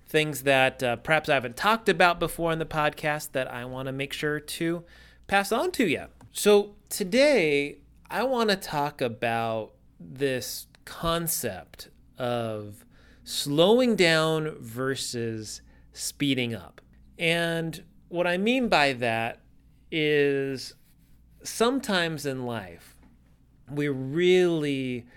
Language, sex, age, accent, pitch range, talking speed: English, male, 30-49, American, 125-170 Hz, 120 wpm